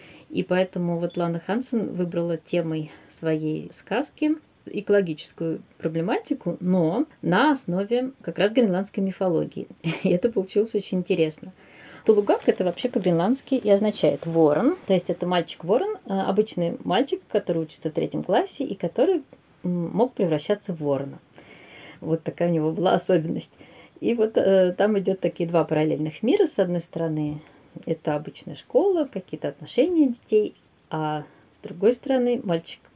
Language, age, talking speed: Russian, 20-39, 135 wpm